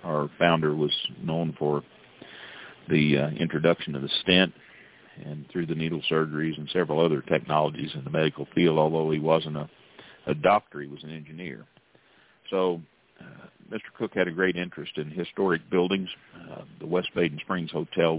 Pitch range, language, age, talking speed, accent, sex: 75-85 Hz, English, 50-69, 170 wpm, American, male